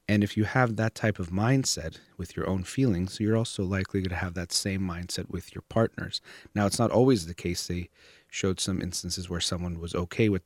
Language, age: English, 30-49